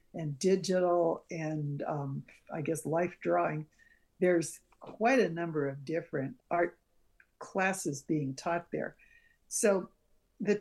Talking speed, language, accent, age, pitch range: 120 wpm, English, American, 60-79, 155-190 Hz